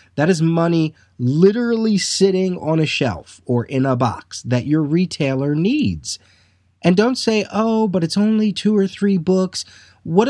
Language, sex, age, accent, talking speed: English, male, 30-49, American, 165 wpm